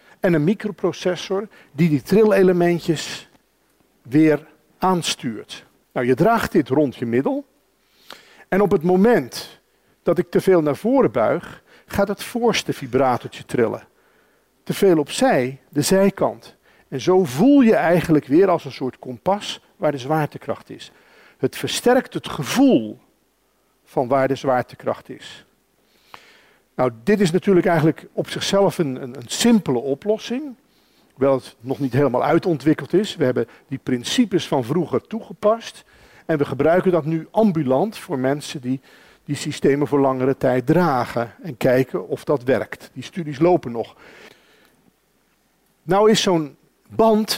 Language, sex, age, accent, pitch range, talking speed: Dutch, male, 50-69, Dutch, 135-195 Hz, 145 wpm